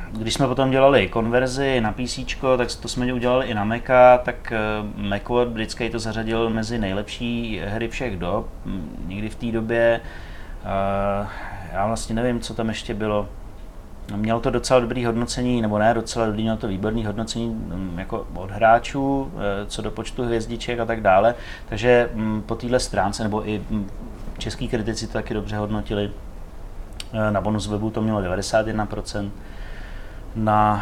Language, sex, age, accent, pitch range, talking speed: Czech, male, 30-49, native, 105-125 Hz, 150 wpm